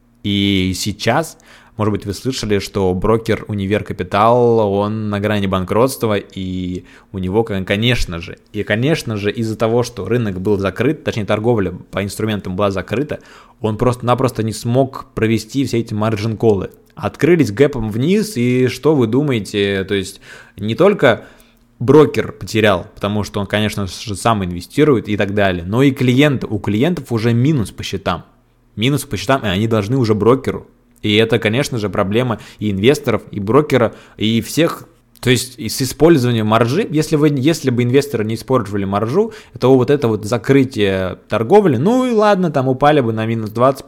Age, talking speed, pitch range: 20-39, 165 wpm, 105-125 Hz